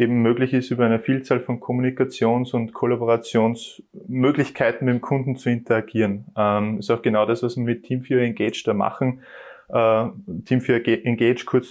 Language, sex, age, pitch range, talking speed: German, male, 20-39, 110-125 Hz, 155 wpm